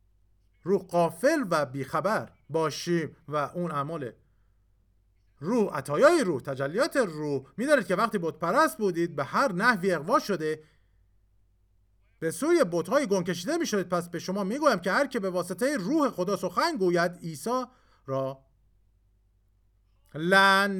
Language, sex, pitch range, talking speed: Persian, male, 130-195 Hz, 135 wpm